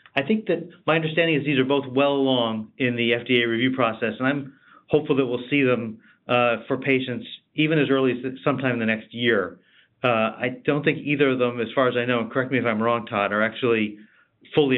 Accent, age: American, 40-59